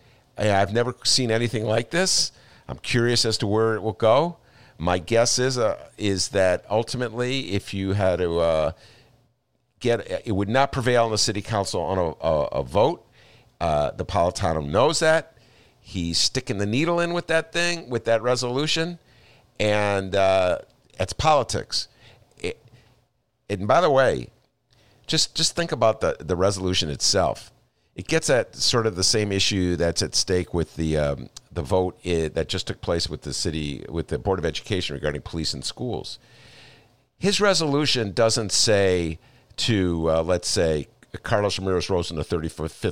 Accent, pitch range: American, 90-120 Hz